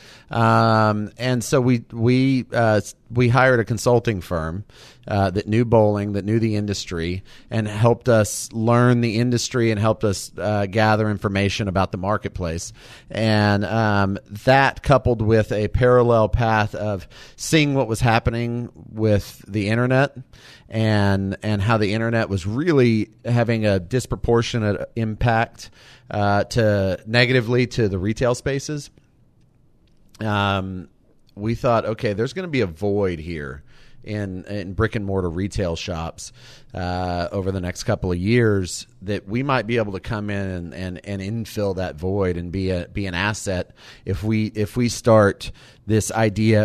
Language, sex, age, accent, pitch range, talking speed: English, male, 40-59, American, 100-120 Hz, 155 wpm